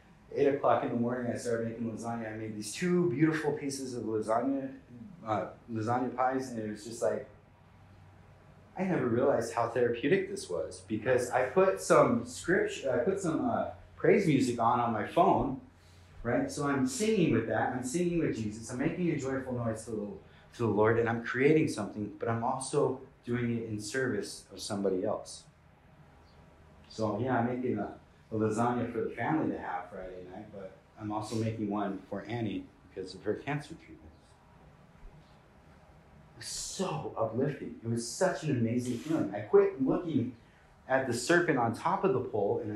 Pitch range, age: 105-140 Hz, 30-49